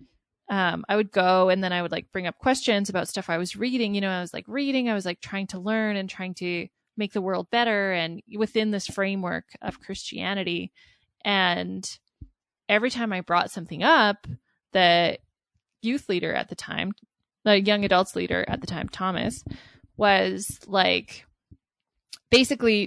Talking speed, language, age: 175 wpm, English, 20-39